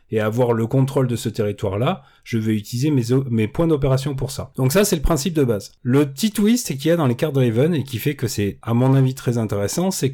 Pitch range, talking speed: 115-145 Hz, 260 wpm